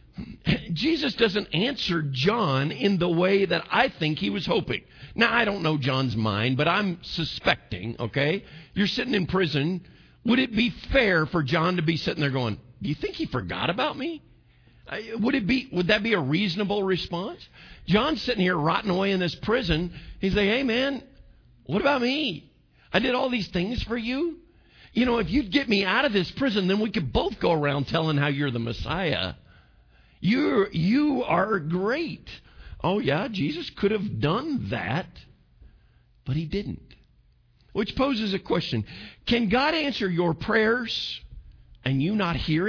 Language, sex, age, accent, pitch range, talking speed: English, male, 50-69, American, 140-215 Hz, 175 wpm